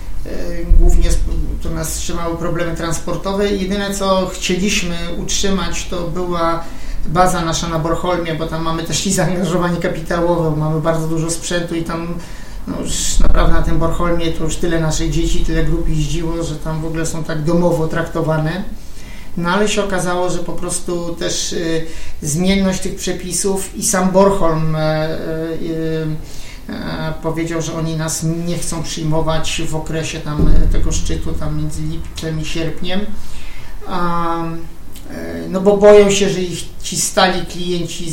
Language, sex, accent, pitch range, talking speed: Polish, male, native, 160-175 Hz, 145 wpm